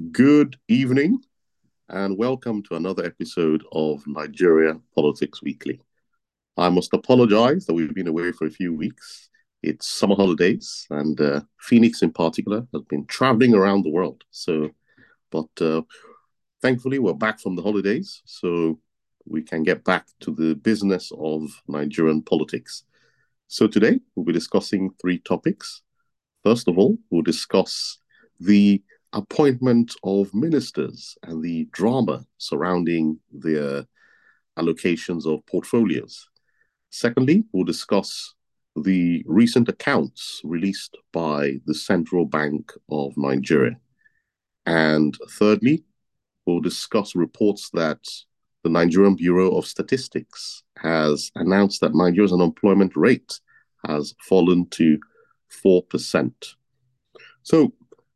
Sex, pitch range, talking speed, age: male, 80-105 Hz, 120 wpm, 50-69